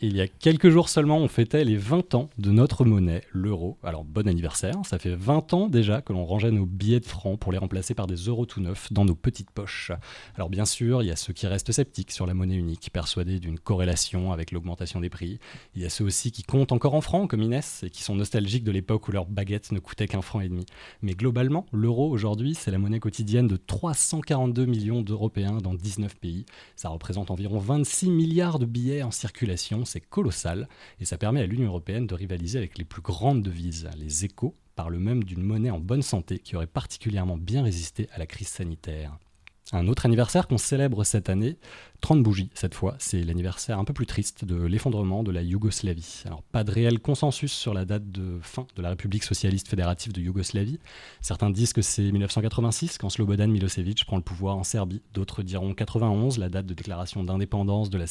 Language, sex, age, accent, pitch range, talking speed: French, male, 30-49, French, 95-120 Hz, 215 wpm